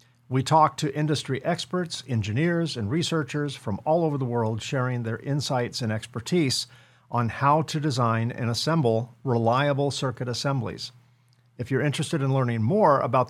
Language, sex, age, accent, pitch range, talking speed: English, male, 50-69, American, 120-150 Hz, 155 wpm